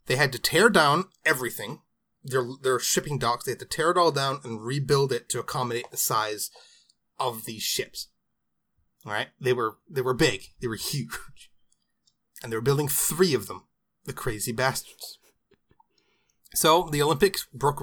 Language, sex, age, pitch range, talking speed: English, male, 30-49, 120-160 Hz, 170 wpm